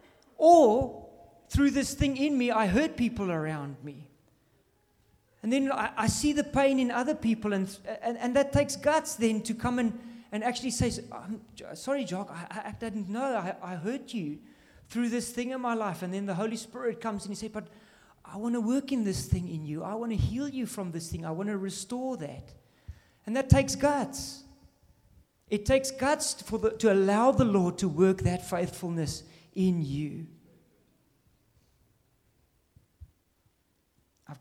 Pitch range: 145-220 Hz